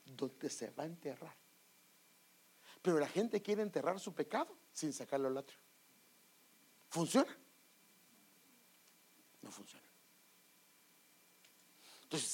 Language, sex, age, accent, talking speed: English, male, 60-79, Mexican, 95 wpm